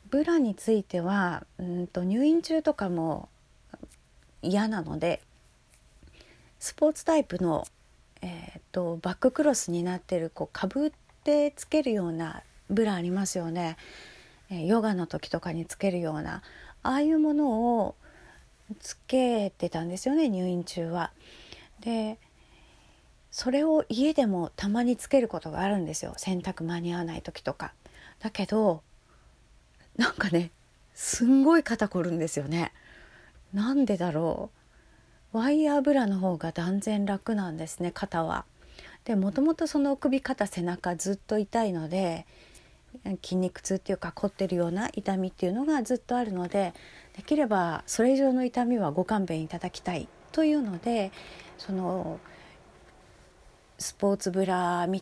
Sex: female